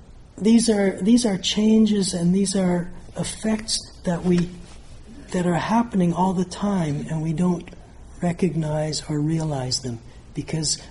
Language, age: English, 60-79